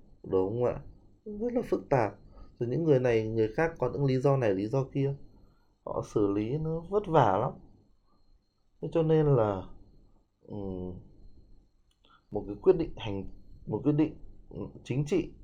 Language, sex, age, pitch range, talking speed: Vietnamese, male, 20-39, 100-125 Hz, 160 wpm